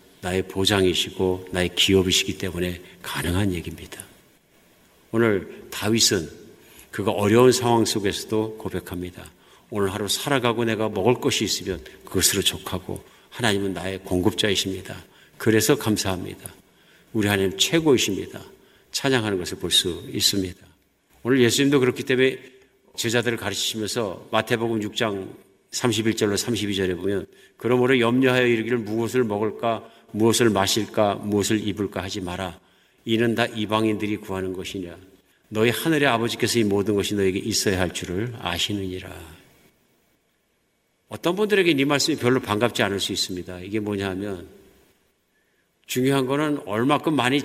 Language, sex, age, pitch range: Korean, male, 50-69, 95-120 Hz